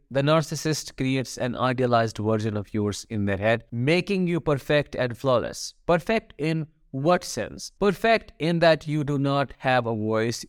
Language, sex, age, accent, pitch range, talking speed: English, male, 50-69, Indian, 120-155 Hz, 165 wpm